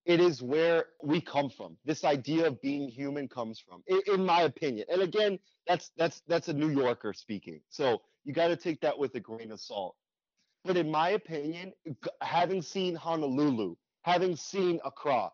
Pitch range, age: 145-185 Hz, 30-49